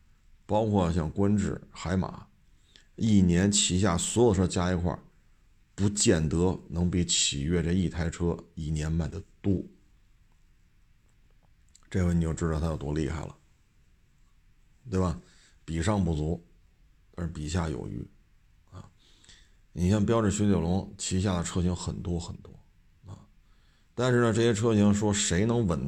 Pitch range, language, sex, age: 80-100 Hz, Chinese, male, 50-69